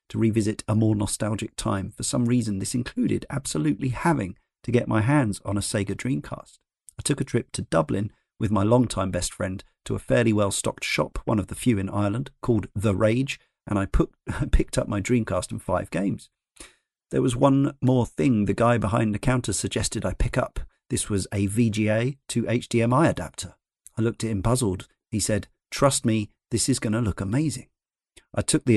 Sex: male